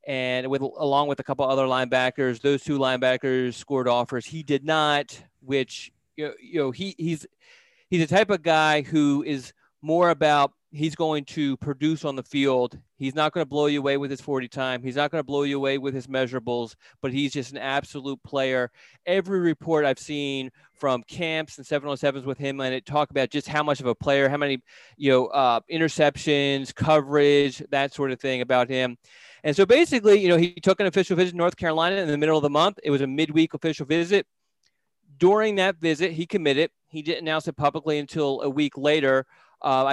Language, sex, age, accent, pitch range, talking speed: English, male, 30-49, American, 135-160 Hz, 210 wpm